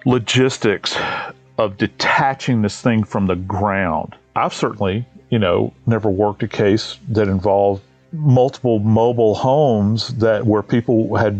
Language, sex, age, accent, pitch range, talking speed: English, male, 40-59, American, 105-140 Hz, 130 wpm